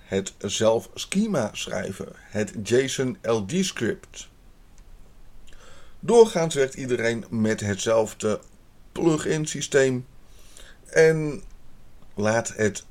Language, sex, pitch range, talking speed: Dutch, male, 105-135 Hz, 85 wpm